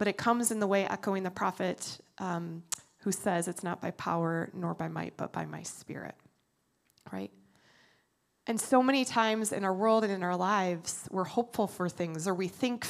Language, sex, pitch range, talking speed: English, female, 195-255 Hz, 195 wpm